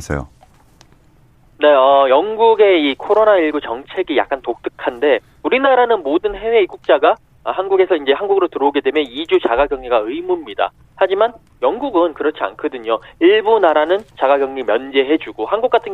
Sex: male